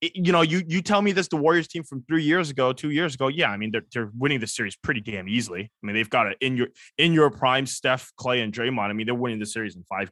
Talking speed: 295 wpm